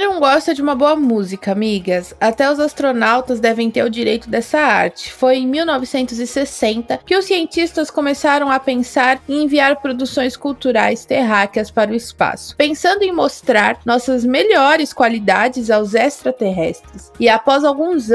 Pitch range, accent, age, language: 235-295 Hz, Brazilian, 20-39, Portuguese